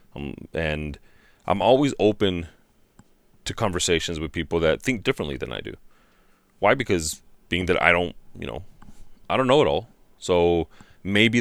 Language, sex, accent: English, male, American